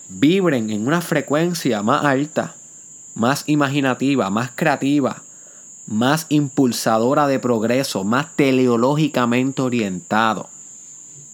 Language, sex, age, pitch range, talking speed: Spanish, male, 30-49, 130-165 Hz, 90 wpm